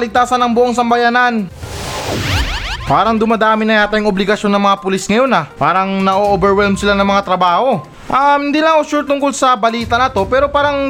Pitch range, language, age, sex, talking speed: 210-265 Hz, Filipino, 20-39, male, 175 wpm